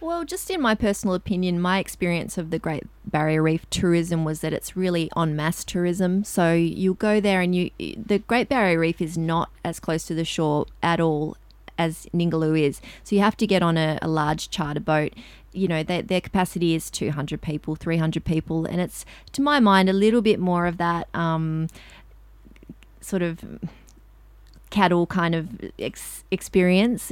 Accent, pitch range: Australian, 160-185 Hz